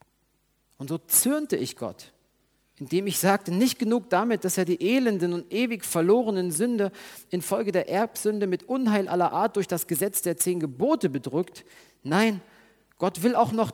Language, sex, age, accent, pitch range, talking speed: German, male, 40-59, German, 135-190 Hz, 165 wpm